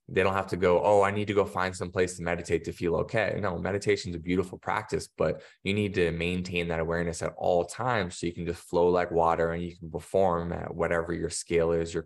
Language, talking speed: English, 255 wpm